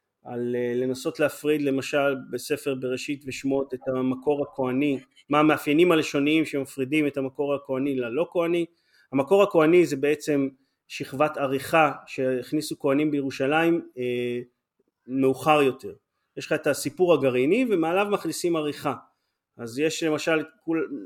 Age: 30-49